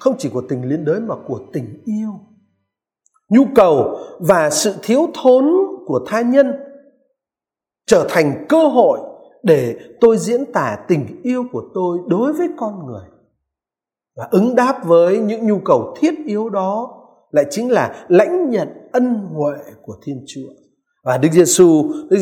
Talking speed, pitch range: 160 wpm, 185-290 Hz